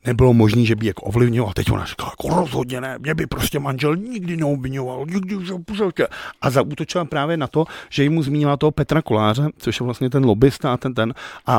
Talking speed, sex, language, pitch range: 225 wpm, male, Czech, 120-150 Hz